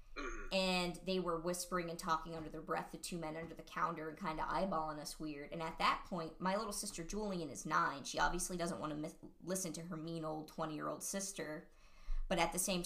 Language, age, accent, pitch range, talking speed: English, 20-39, American, 155-185 Hz, 230 wpm